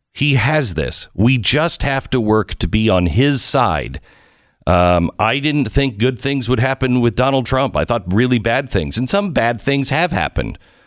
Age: 50-69